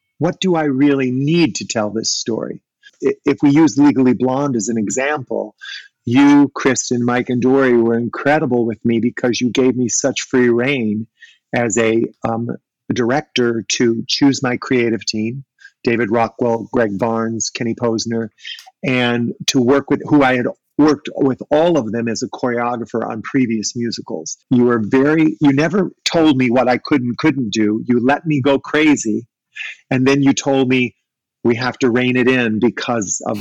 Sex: male